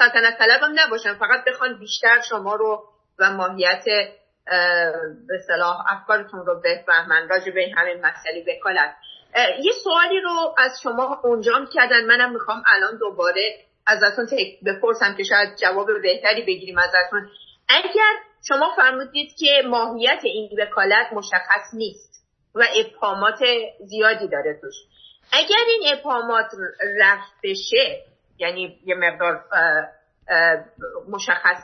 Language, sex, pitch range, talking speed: Persian, female, 195-280 Hz, 125 wpm